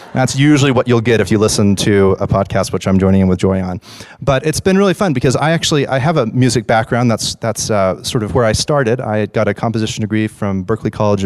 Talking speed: 250 wpm